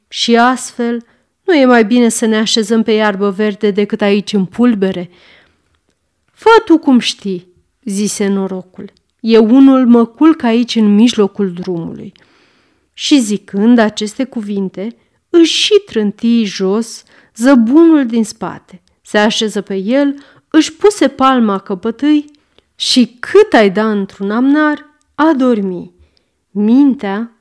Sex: female